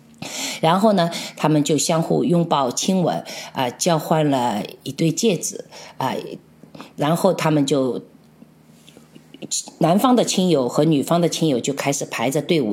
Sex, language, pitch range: female, Chinese, 155-215 Hz